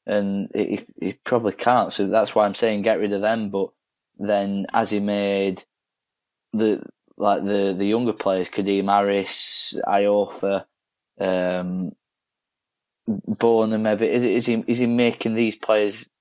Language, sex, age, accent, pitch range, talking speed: English, male, 20-39, British, 100-115 Hz, 145 wpm